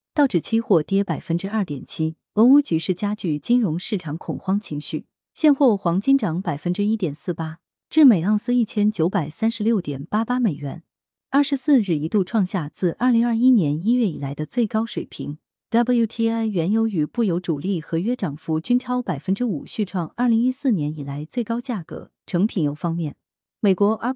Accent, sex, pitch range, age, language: native, female, 160-225 Hz, 30-49, Chinese